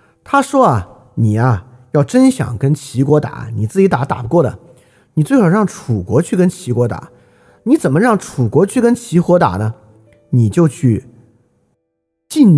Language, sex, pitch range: Chinese, male, 120-180 Hz